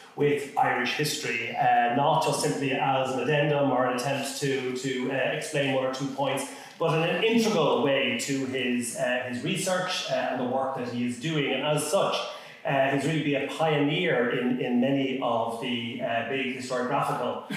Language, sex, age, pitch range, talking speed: English, male, 30-49, 130-155 Hz, 190 wpm